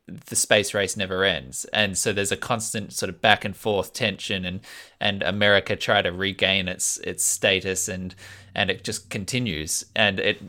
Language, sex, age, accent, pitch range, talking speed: English, male, 20-39, Australian, 95-115 Hz, 185 wpm